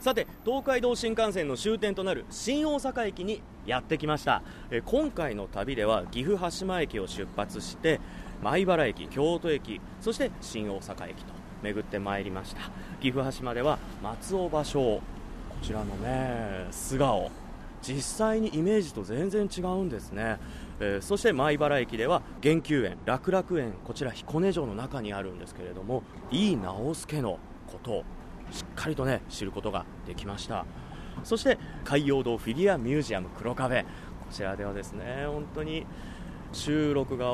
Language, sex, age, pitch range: Japanese, male, 30-49, 100-170 Hz